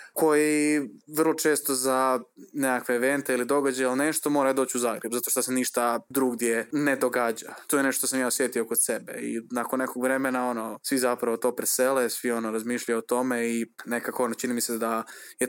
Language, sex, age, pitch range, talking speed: Croatian, male, 20-39, 115-135 Hz, 200 wpm